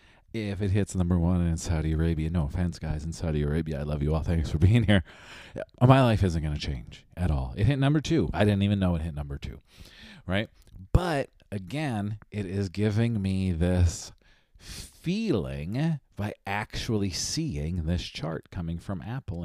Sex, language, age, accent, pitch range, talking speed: male, English, 40-59, American, 80-105 Hz, 180 wpm